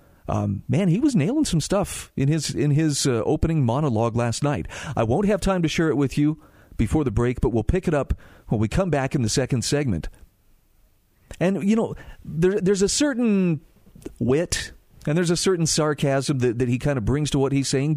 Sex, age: male, 40-59